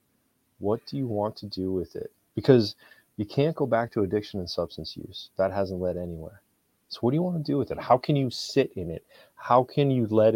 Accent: American